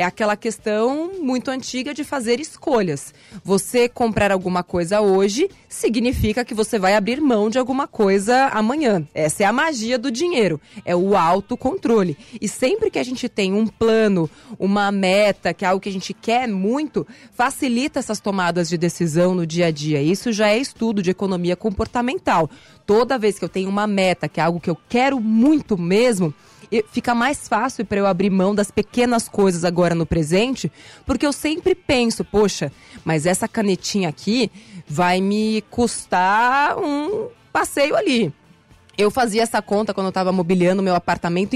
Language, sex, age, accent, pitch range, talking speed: Portuguese, female, 20-39, Brazilian, 185-240 Hz, 170 wpm